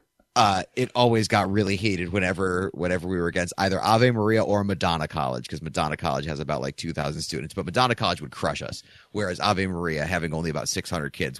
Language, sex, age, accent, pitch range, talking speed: English, male, 30-49, American, 75-100 Hz, 205 wpm